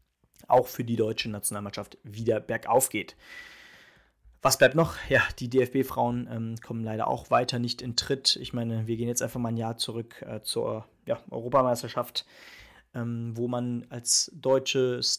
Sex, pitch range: male, 115-130 Hz